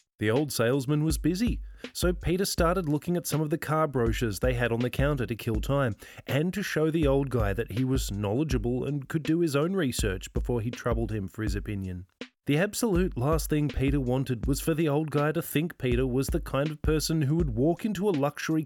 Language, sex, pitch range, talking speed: English, male, 115-155 Hz, 230 wpm